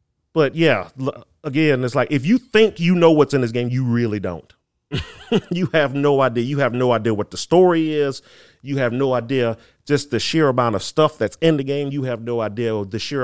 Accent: American